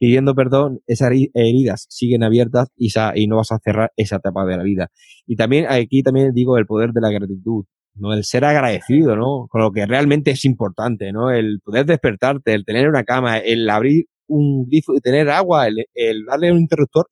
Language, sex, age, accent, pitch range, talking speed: Spanish, male, 20-39, Spanish, 110-150 Hz, 195 wpm